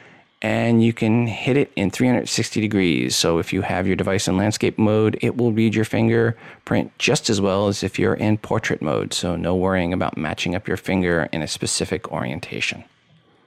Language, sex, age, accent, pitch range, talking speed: English, male, 40-59, American, 95-115 Hz, 190 wpm